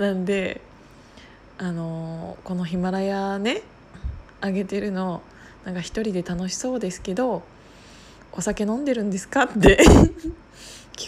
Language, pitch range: Japanese, 180-230 Hz